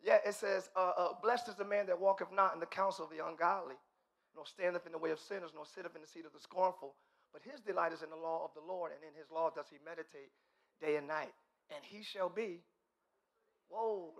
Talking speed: 245 wpm